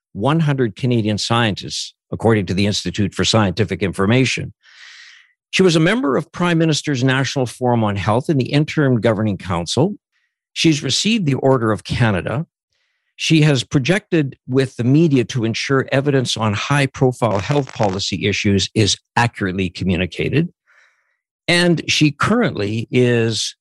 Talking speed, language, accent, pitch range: 135 wpm, English, American, 110-145 Hz